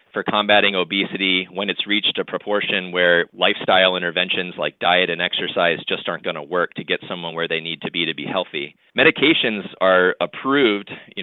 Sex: male